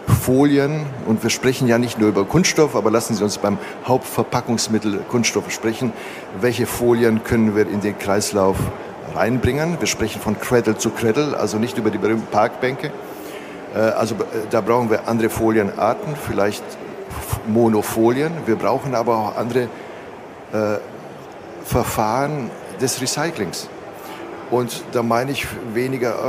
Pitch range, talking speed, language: 110-125 Hz, 135 wpm, German